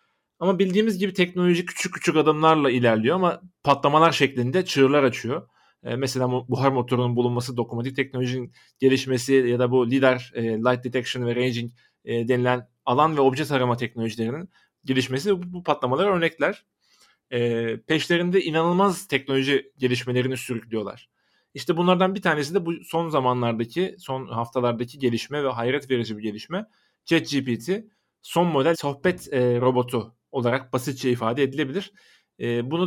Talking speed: 140 wpm